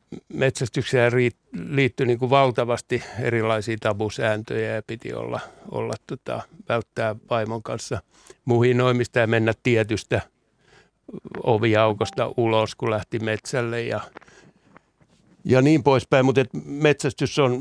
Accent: native